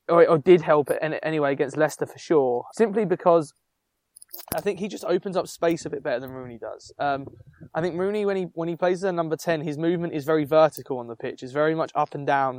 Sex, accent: male, British